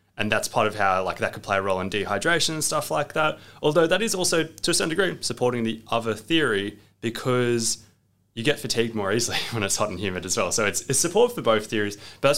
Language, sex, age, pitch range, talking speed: English, male, 20-39, 105-145 Hz, 240 wpm